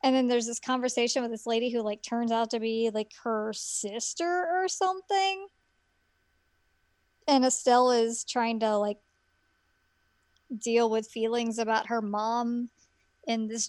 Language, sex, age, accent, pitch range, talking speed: English, male, 20-39, American, 220-260 Hz, 145 wpm